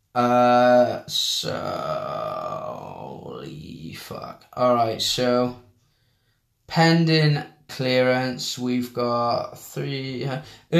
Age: 10-29